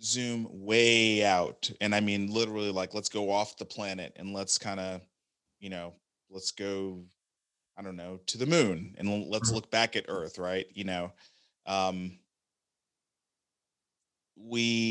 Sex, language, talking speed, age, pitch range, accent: male, English, 155 wpm, 30-49, 90-105 Hz, American